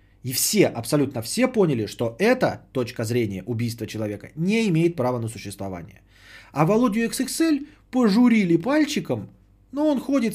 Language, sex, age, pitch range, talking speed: Bulgarian, male, 20-39, 110-170 Hz, 140 wpm